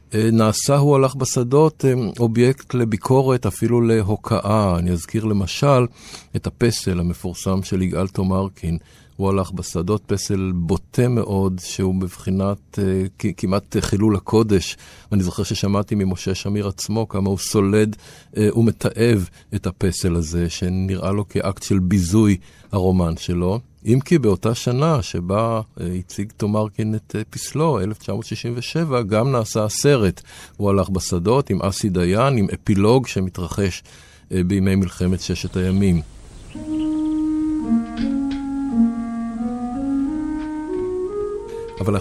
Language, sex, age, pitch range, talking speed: Hebrew, male, 50-69, 95-125 Hz, 110 wpm